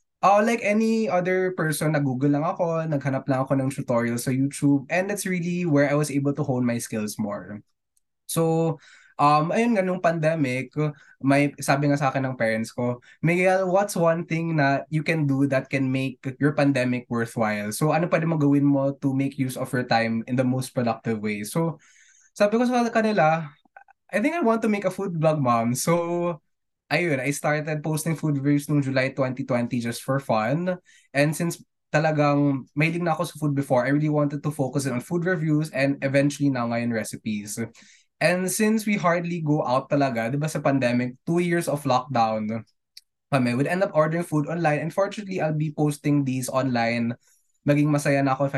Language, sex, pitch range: Filipino, male, 130-170 Hz